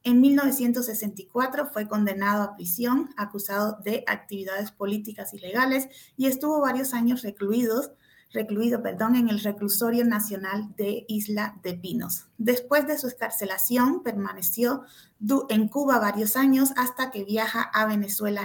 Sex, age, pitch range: female, 30-49, 200-250 Hz